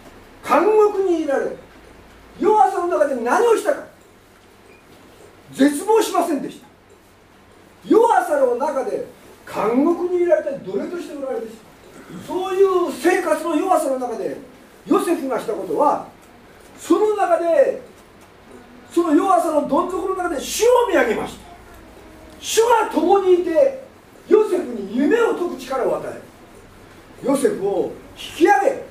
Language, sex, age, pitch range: English, male, 40-59, 285-400 Hz